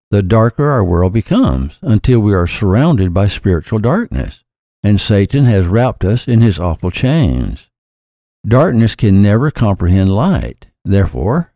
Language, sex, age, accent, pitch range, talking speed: English, male, 60-79, American, 90-120 Hz, 140 wpm